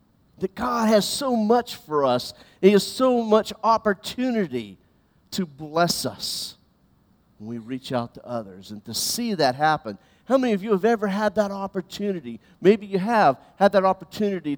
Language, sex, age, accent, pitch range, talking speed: English, male, 50-69, American, 125-190 Hz, 170 wpm